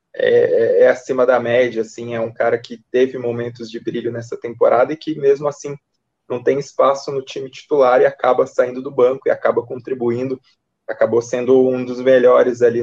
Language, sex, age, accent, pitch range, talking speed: Portuguese, male, 20-39, Brazilian, 120-150 Hz, 185 wpm